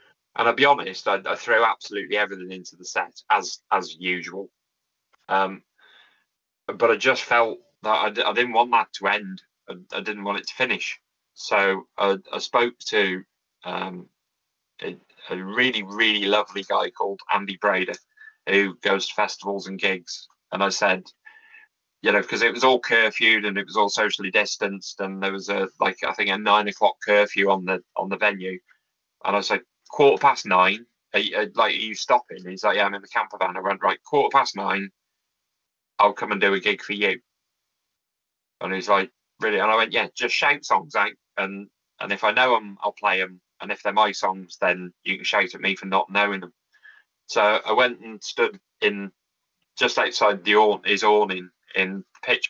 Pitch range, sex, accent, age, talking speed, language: 95-105 Hz, male, British, 20-39, 195 wpm, English